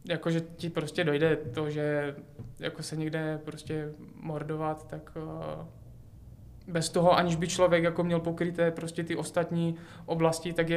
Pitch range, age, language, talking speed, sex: 155-180 Hz, 20-39, Czech, 145 wpm, male